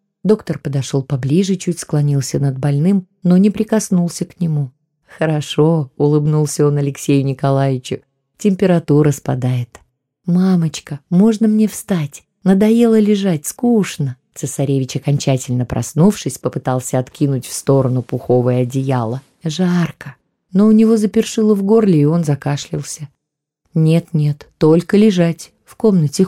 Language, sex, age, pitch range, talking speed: Russian, female, 20-39, 140-180 Hz, 115 wpm